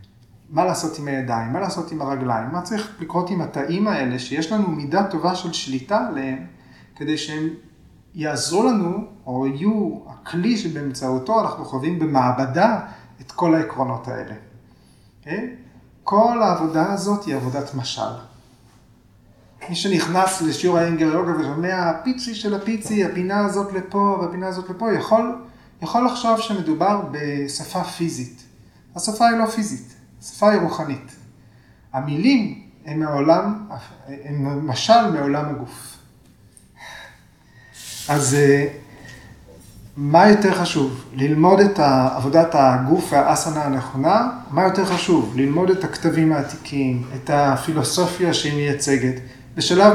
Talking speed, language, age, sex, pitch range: 120 wpm, Hebrew, 30-49, male, 135-185 Hz